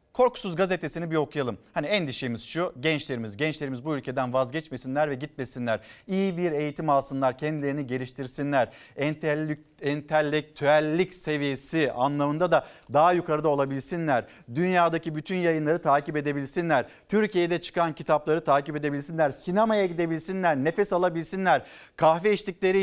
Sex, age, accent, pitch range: male, 50-69, native, 145-190 Hz